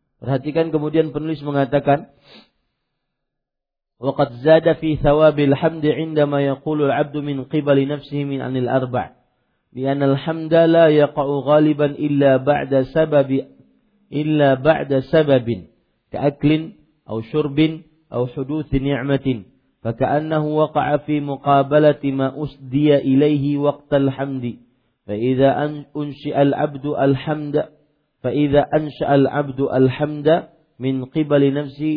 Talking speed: 100 wpm